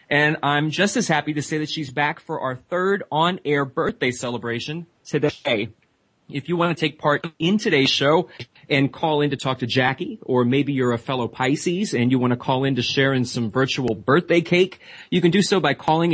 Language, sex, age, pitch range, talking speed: English, male, 30-49, 125-155 Hz, 215 wpm